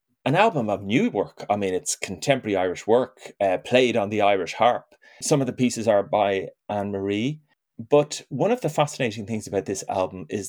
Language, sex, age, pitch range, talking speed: English, male, 30-49, 100-145 Hz, 195 wpm